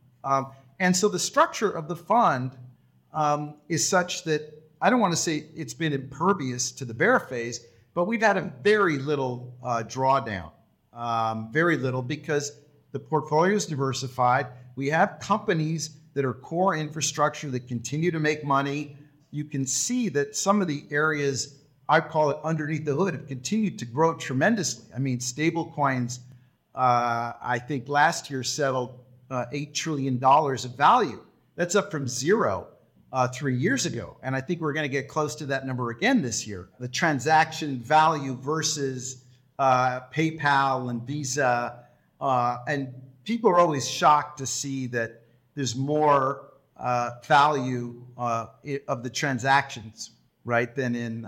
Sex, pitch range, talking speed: male, 125-155 Hz, 160 wpm